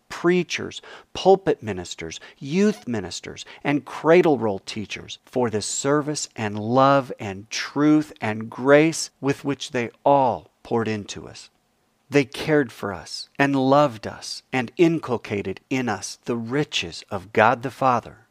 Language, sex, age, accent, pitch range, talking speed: English, male, 40-59, American, 110-155 Hz, 135 wpm